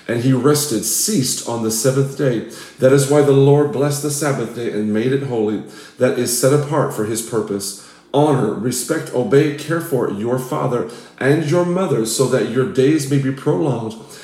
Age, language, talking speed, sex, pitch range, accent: 40-59, English, 190 wpm, male, 120-150 Hz, American